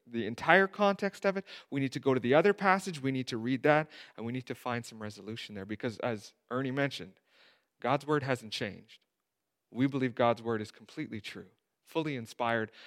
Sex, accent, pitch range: male, American, 115-175 Hz